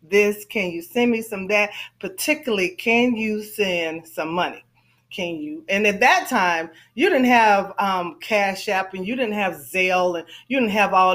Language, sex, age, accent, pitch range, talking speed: English, female, 30-49, American, 180-230 Hz, 190 wpm